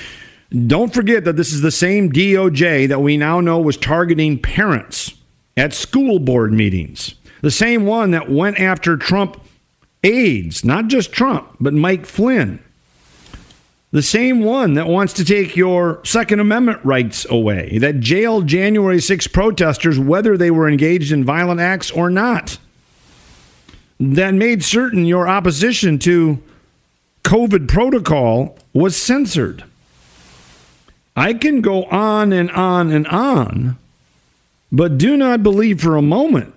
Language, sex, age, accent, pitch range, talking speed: English, male, 50-69, American, 130-220 Hz, 140 wpm